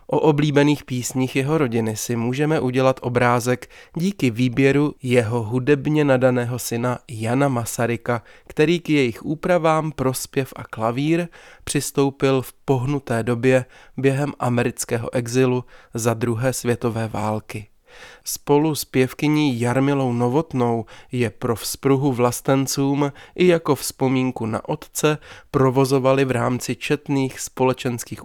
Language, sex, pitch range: Czech, male, 120-140 Hz